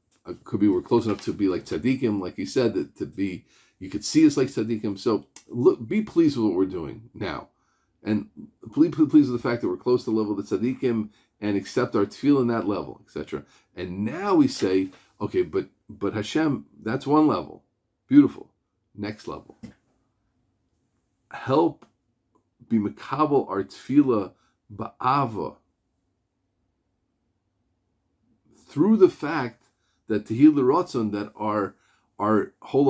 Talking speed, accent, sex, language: 150 wpm, American, male, English